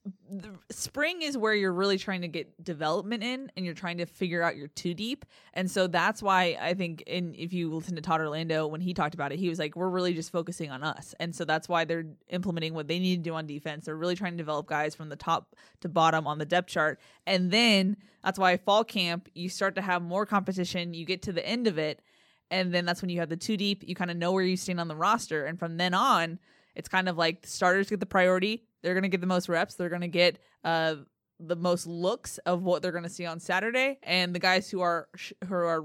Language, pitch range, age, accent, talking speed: English, 165-190 Hz, 20-39, American, 265 wpm